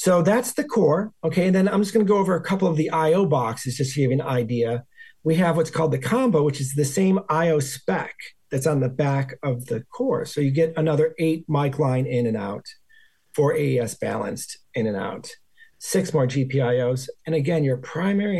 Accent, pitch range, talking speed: American, 125-165 Hz, 215 wpm